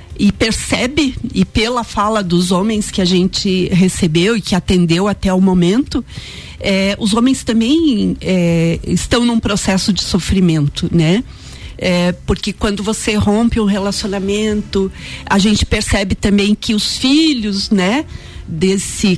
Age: 40-59